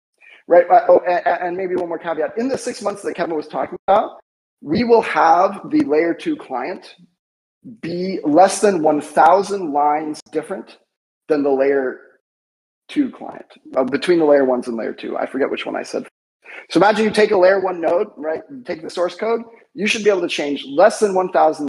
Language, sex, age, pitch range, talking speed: English, male, 30-49, 155-230 Hz, 195 wpm